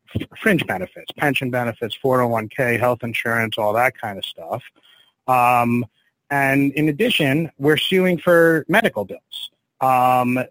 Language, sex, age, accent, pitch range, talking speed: English, male, 30-49, American, 120-145 Hz, 125 wpm